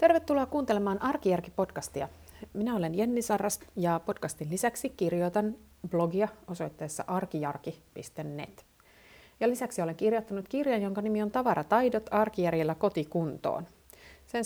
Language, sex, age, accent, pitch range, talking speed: Finnish, female, 30-49, native, 165-225 Hz, 105 wpm